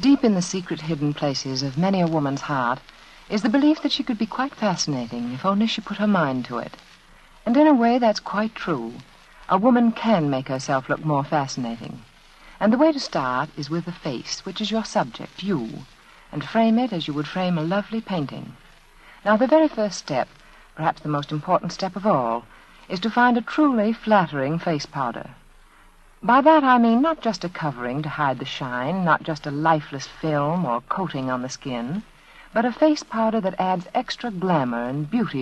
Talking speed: 200 wpm